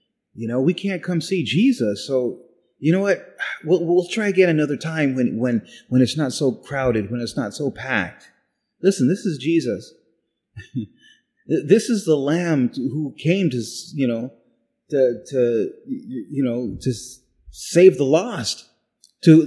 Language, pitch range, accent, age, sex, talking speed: English, 135-185 Hz, American, 30-49, male, 160 wpm